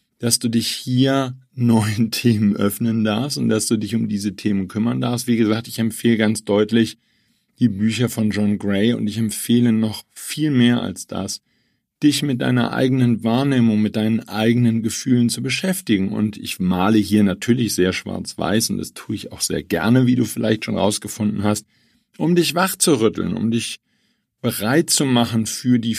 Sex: male